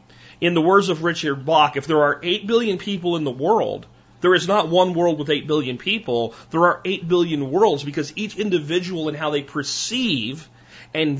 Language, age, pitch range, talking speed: English, 40-59, 145-210 Hz, 200 wpm